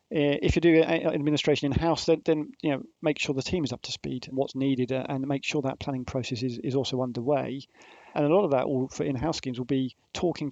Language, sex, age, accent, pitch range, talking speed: English, male, 40-59, British, 130-145 Hz, 220 wpm